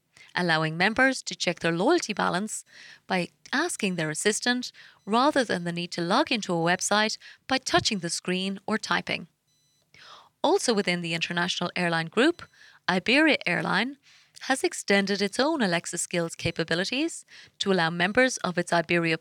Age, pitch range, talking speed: 30-49, 175-255 Hz, 145 wpm